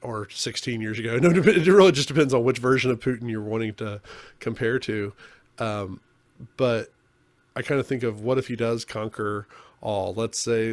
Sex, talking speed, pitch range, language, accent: male, 190 wpm, 110-125 Hz, English, American